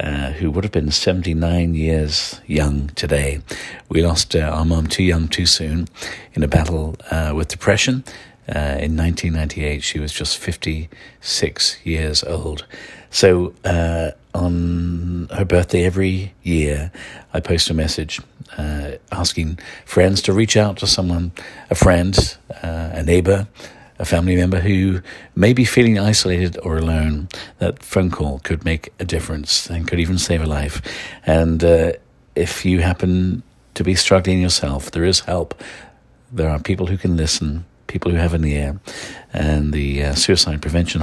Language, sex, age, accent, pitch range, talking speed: English, male, 50-69, British, 75-90 Hz, 155 wpm